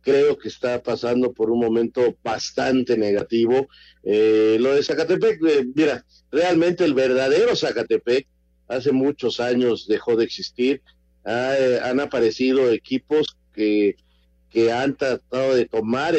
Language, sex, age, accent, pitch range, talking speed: Spanish, male, 50-69, Mexican, 110-155 Hz, 135 wpm